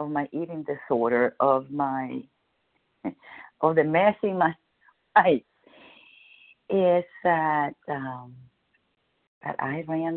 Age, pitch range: 50-69, 150-210 Hz